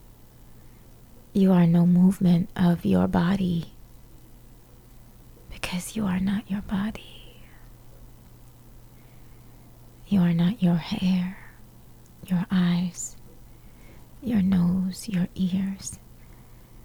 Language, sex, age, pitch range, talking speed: English, female, 20-39, 165-190 Hz, 85 wpm